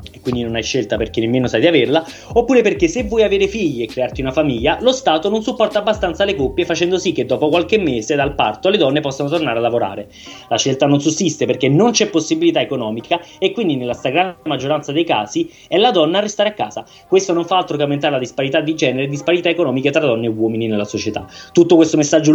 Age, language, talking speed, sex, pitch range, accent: 20-39, Italian, 230 wpm, male, 120-180 Hz, native